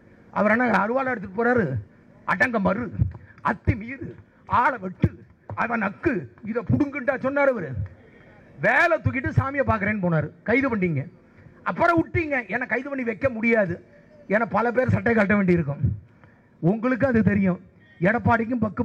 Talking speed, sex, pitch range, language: 130 wpm, male, 180-255 Hz, English